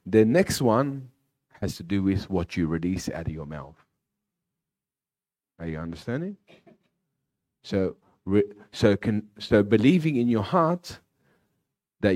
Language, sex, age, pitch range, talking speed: English, male, 40-59, 90-130 Hz, 135 wpm